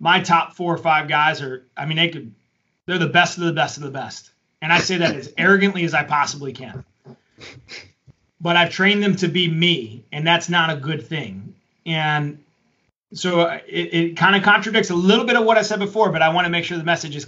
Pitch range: 160-195 Hz